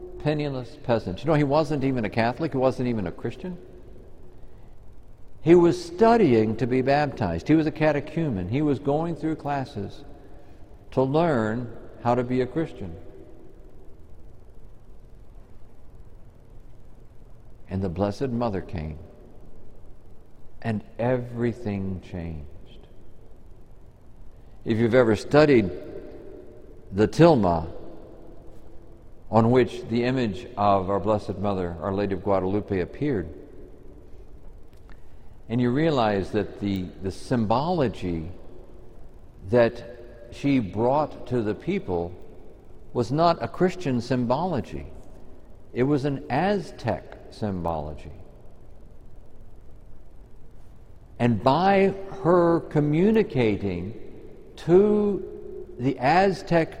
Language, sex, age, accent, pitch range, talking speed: English, male, 60-79, American, 95-135 Hz, 95 wpm